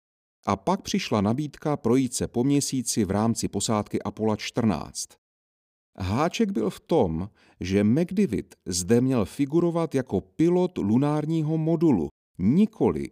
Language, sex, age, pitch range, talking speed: Czech, male, 40-59, 100-155 Hz, 125 wpm